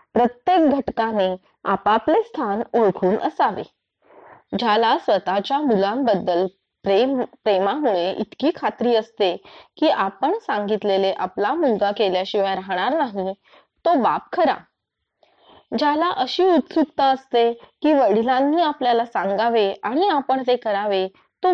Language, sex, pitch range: Marathi, female, 195-290 Hz